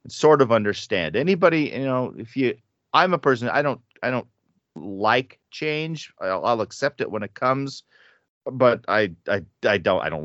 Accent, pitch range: American, 95-130 Hz